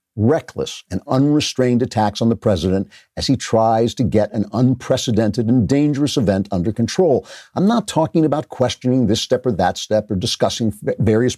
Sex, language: male, English